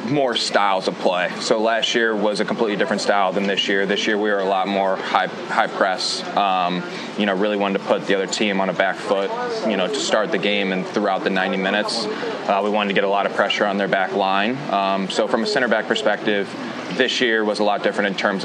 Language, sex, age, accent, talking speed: English, male, 20-39, American, 255 wpm